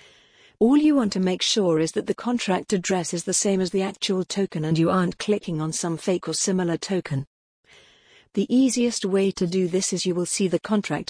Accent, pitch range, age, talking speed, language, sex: British, 170-200 Hz, 50-69, 215 wpm, English, female